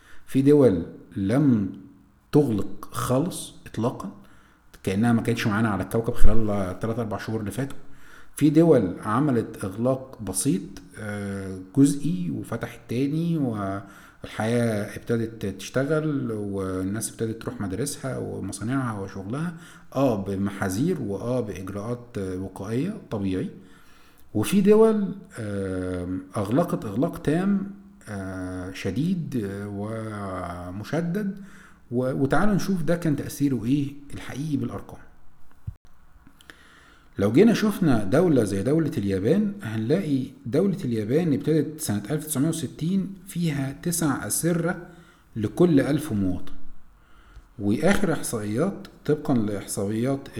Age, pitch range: 50-69, 105-155 Hz